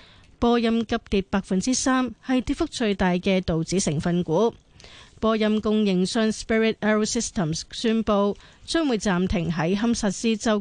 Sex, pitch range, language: female, 175-220 Hz, Chinese